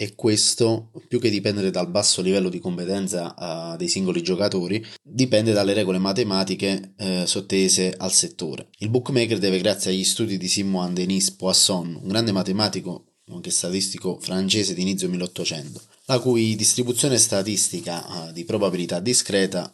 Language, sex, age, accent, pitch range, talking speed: Italian, male, 20-39, native, 95-120 Hz, 140 wpm